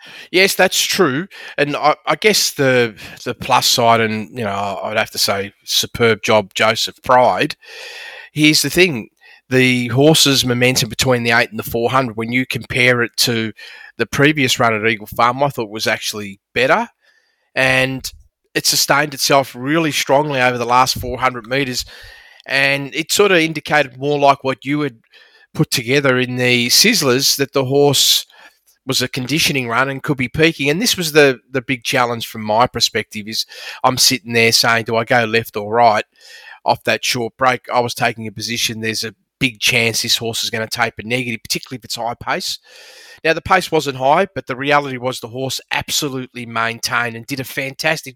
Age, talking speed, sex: 30-49, 185 wpm, male